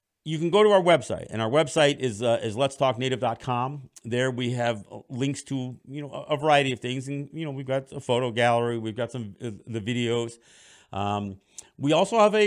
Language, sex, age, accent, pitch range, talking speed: English, male, 50-69, American, 110-145 Hz, 200 wpm